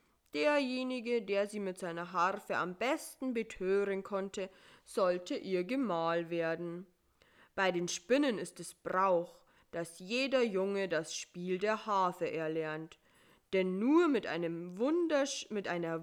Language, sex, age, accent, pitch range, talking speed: German, female, 20-39, German, 175-215 Hz, 125 wpm